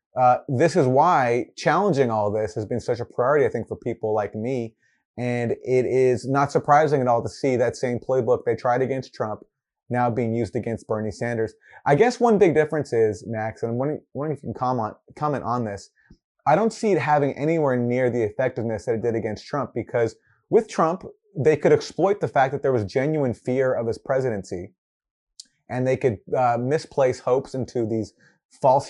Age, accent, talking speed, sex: 30-49, American, 200 wpm, male